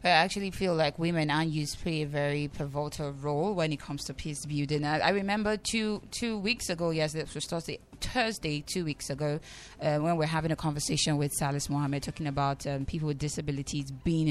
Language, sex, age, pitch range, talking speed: English, female, 20-39, 145-170 Hz, 205 wpm